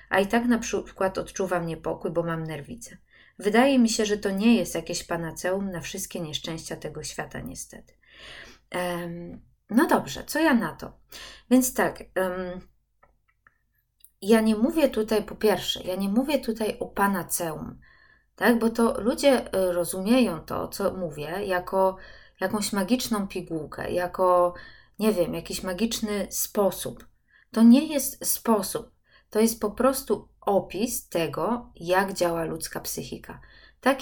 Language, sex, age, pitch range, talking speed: Polish, female, 20-39, 180-240 Hz, 140 wpm